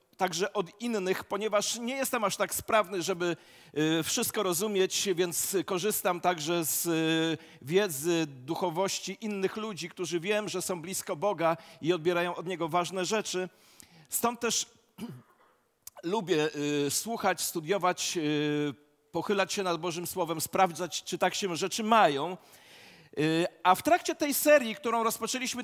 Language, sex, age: Polish, male, 40-59